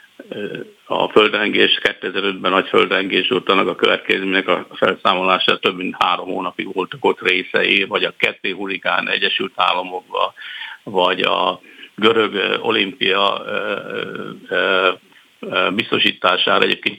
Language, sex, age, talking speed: Hungarian, male, 60-79, 100 wpm